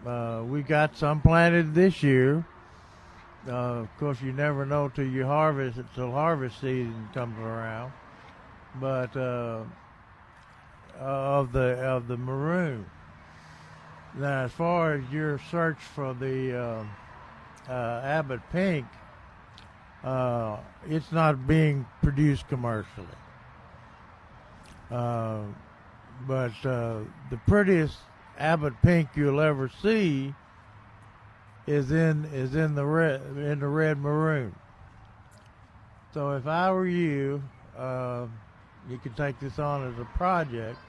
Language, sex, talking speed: English, male, 120 wpm